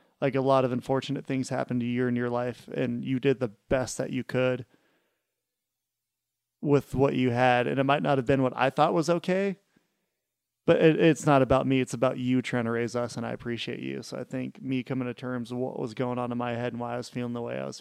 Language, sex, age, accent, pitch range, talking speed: English, male, 30-49, American, 120-135 Hz, 255 wpm